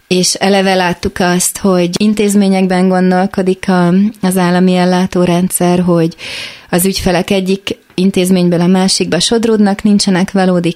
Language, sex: Hungarian, female